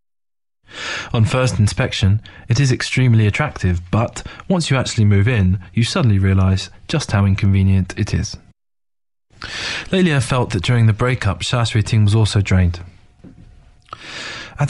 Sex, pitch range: male, 100-125 Hz